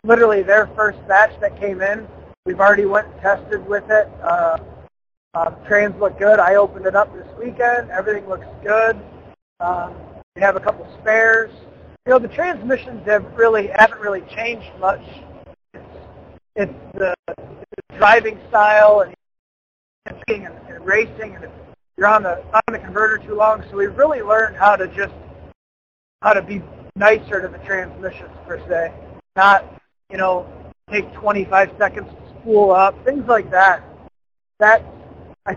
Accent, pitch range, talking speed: American, 190-220 Hz, 155 wpm